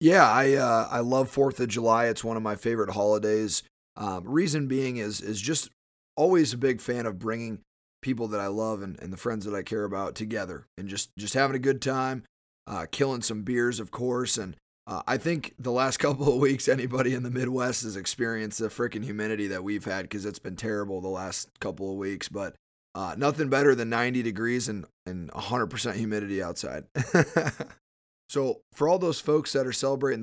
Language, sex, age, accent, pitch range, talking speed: English, male, 30-49, American, 105-135 Hz, 205 wpm